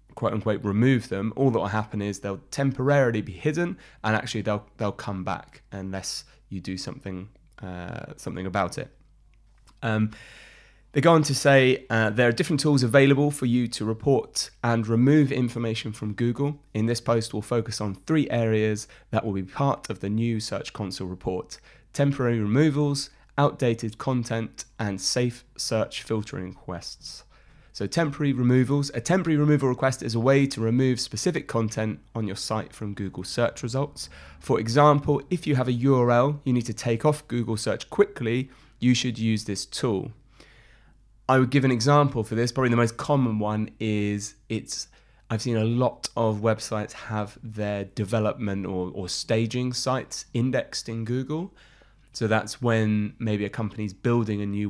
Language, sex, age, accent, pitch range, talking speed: English, male, 20-39, British, 105-135 Hz, 170 wpm